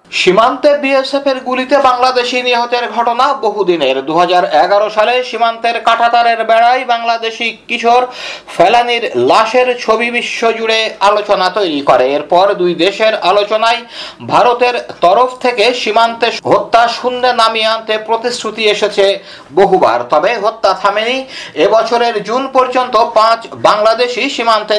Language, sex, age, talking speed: Bengali, male, 50-69, 55 wpm